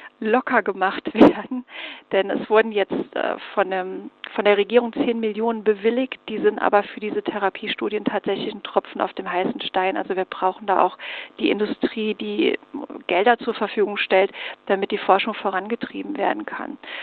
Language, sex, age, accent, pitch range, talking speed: German, female, 40-59, German, 200-245 Hz, 155 wpm